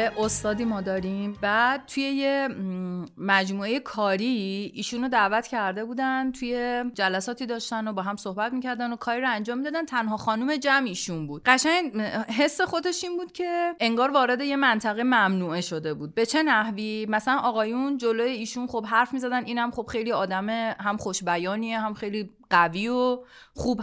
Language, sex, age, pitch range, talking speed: Persian, female, 30-49, 210-290 Hz, 160 wpm